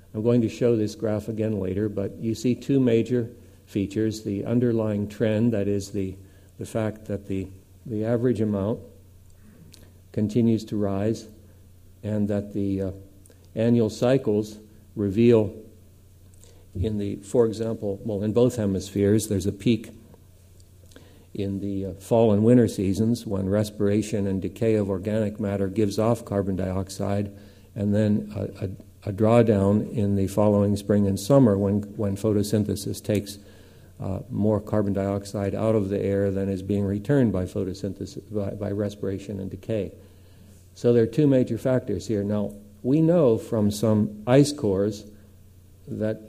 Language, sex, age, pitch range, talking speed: English, male, 60-79, 100-110 Hz, 150 wpm